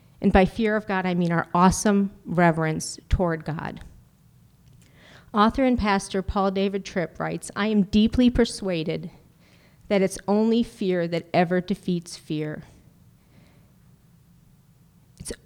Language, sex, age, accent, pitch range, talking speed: English, female, 40-59, American, 175-210 Hz, 125 wpm